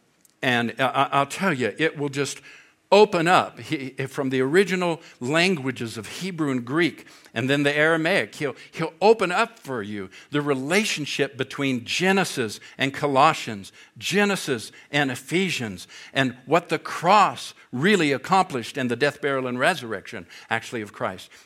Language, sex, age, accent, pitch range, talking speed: English, male, 60-79, American, 130-195 Hz, 145 wpm